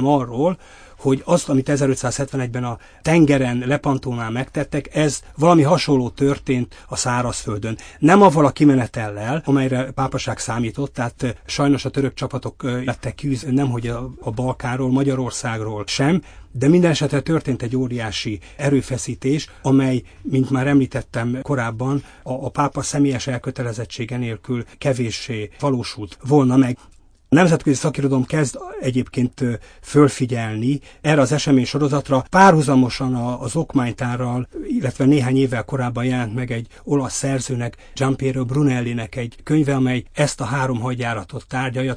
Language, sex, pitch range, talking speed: Hungarian, male, 125-140 Hz, 130 wpm